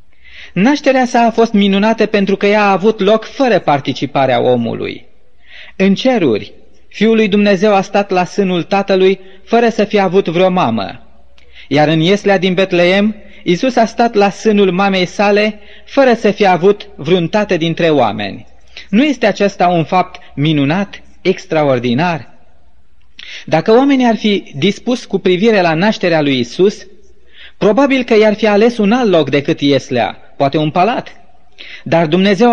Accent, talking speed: native, 150 wpm